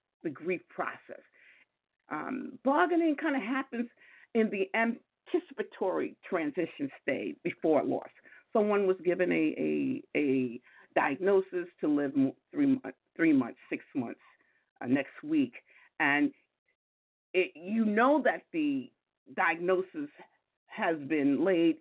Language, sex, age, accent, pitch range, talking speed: English, female, 50-69, American, 195-280 Hz, 120 wpm